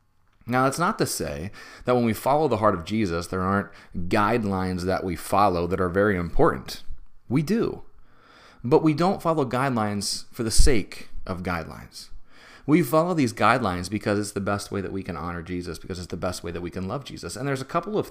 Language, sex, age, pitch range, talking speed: English, male, 30-49, 95-130 Hz, 210 wpm